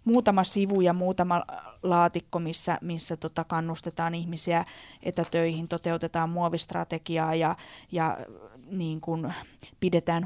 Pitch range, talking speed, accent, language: 170-200 Hz, 105 wpm, native, Finnish